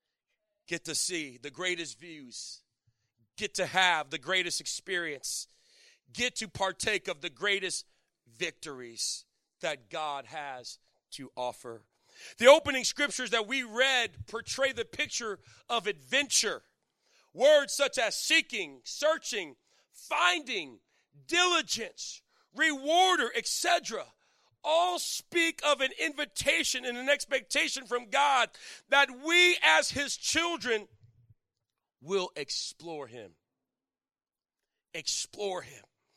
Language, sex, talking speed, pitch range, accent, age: English, male, 105 wpm, 190-310 Hz, American, 40-59